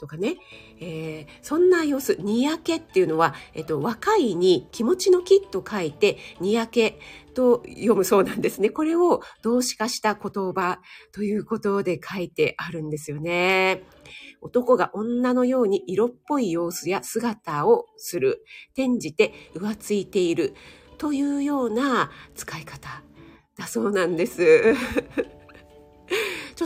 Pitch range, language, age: 185-280 Hz, Japanese, 40-59